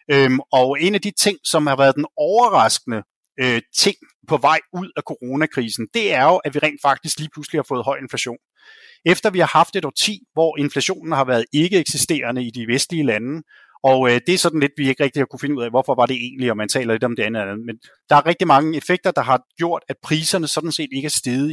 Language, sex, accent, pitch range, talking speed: Danish, male, native, 135-180 Hz, 245 wpm